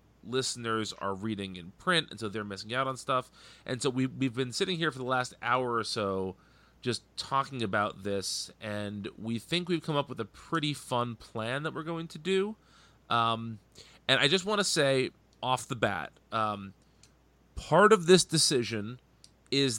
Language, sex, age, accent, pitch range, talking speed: English, male, 30-49, American, 105-140 Hz, 185 wpm